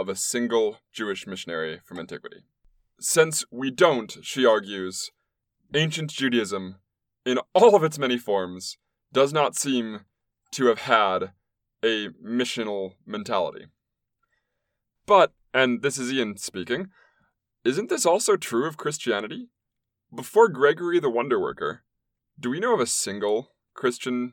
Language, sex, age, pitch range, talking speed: English, male, 20-39, 110-135 Hz, 130 wpm